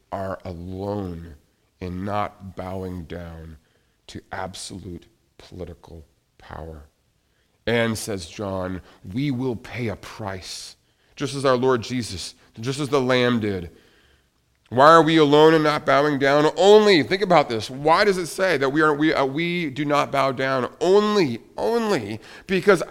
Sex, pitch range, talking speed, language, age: male, 100-155 Hz, 140 wpm, English, 40-59